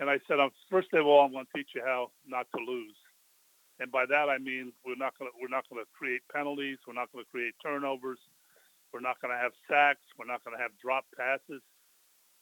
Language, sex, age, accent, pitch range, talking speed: English, male, 50-69, American, 125-145 Hz, 235 wpm